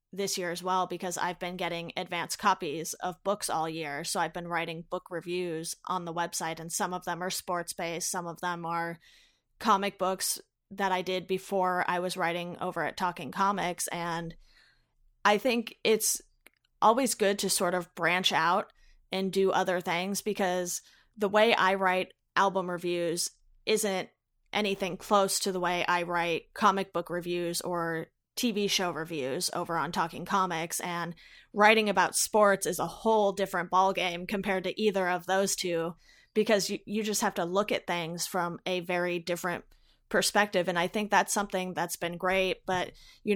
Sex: female